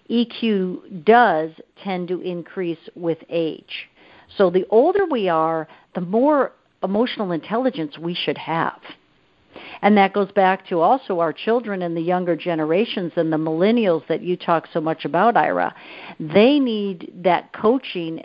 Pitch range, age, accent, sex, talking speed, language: 170-215 Hz, 50-69, American, female, 150 wpm, English